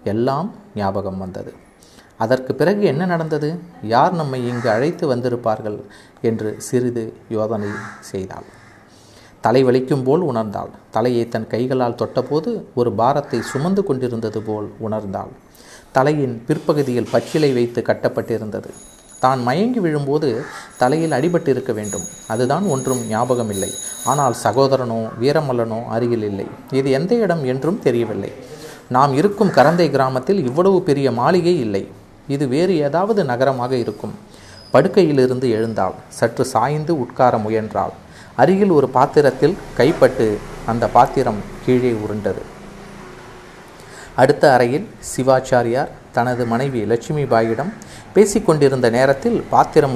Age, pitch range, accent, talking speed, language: 30-49, 115-150 Hz, native, 110 wpm, Tamil